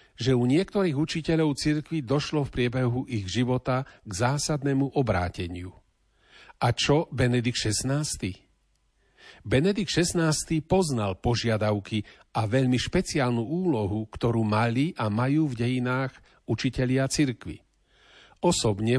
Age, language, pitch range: 50-69, Slovak, 110-145 Hz